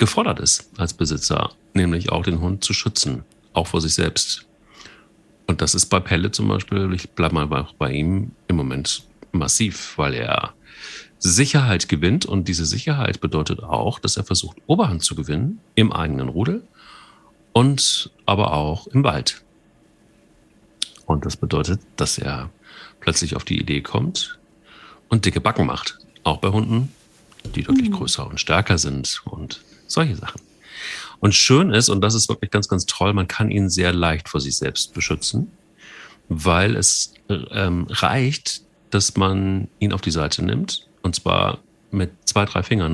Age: 40-59